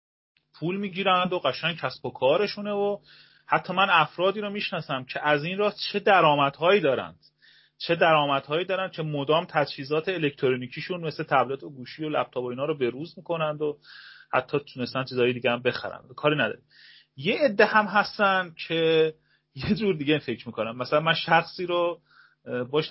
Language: Persian